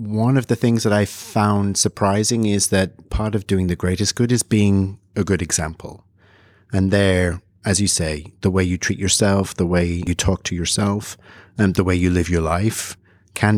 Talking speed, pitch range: 200 wpm, 90-105 Hz